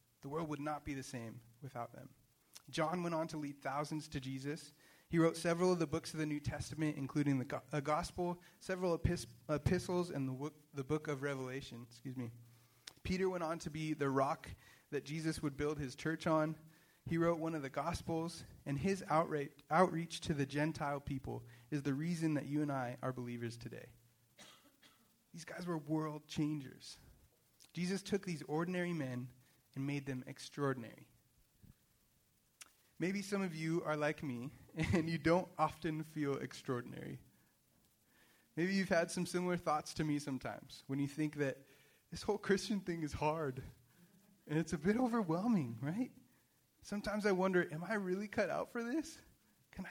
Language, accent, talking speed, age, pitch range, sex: English, American, 175 wpm, 30-49, 135-175 Hz, male